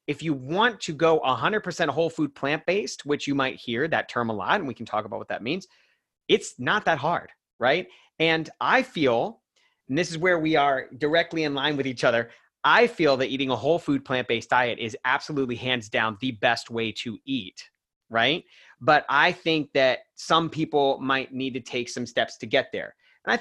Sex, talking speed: male, 210 wpm